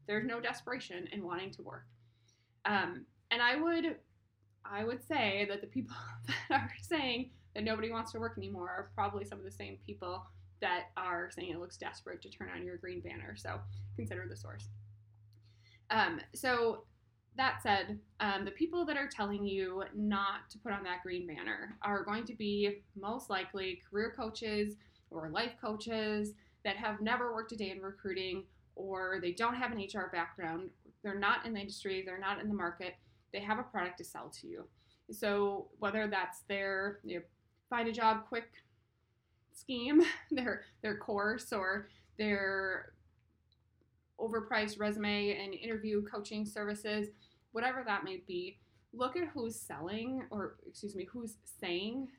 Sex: female